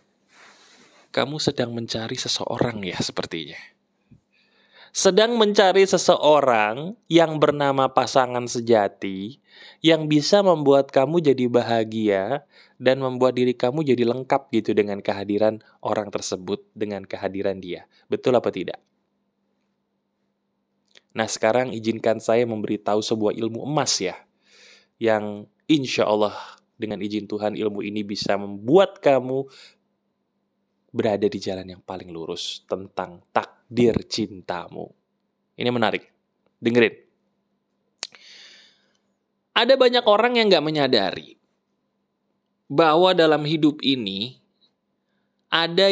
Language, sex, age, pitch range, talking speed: Indonesian, male, 20-39, 105-155 Hz, 105 wpm